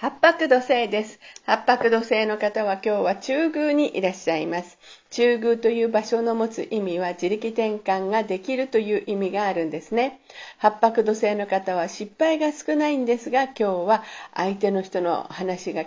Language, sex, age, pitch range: Japanese, female, 50-69, 195-275 Hz